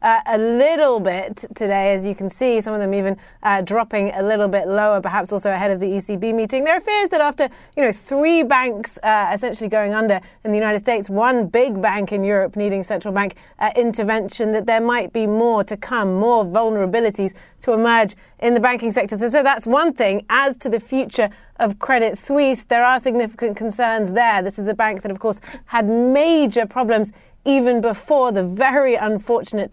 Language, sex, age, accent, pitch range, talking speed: English, female, 30-49, British, 200-240 Hz, 200 wpm